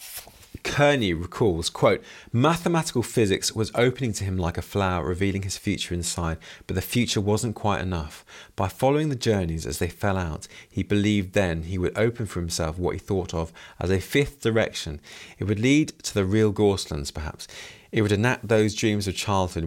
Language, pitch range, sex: English, 90-115 Hz, male